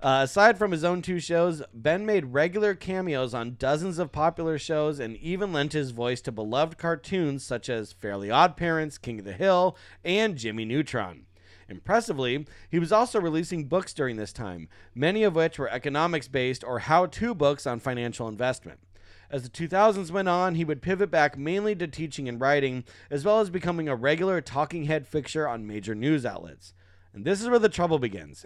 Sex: male